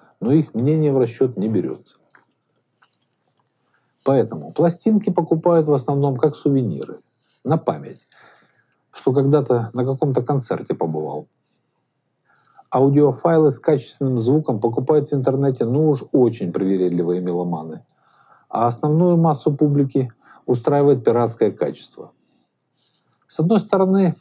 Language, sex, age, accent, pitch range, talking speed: Russian, male, 50-69, native, 115-150 Hz, 110 wpm